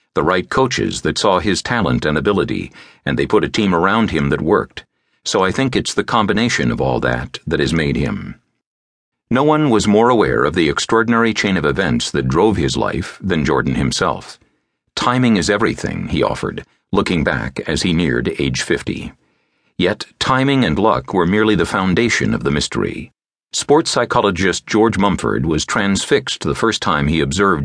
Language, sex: English, male